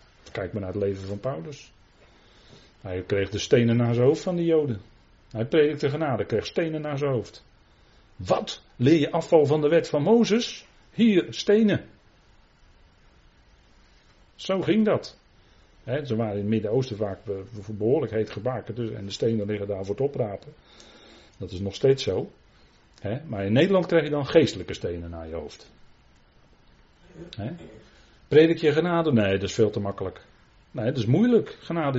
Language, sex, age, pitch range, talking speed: Dutch, male, 40-59, 105-155 Hz, 170 wpm